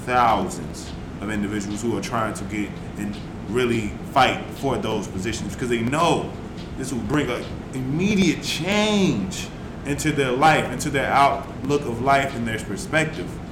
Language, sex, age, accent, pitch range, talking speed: English, male, 20-39, American, 105-145 Hz, 150 wpm